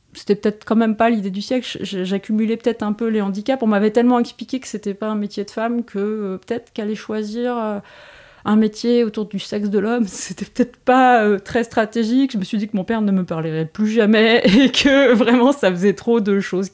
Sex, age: female, 30-49